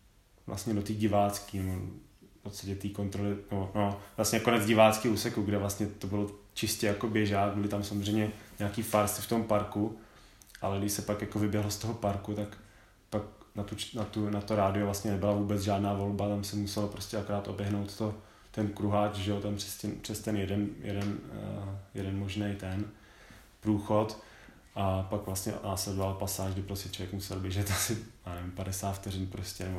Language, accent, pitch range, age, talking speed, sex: Czech, native, 100-105 Hz, 20-39, 170 wpm, male